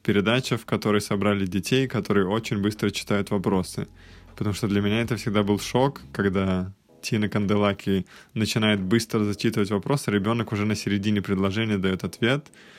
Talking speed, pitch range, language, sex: 150 wpm, 100-115 Hz, Russian, male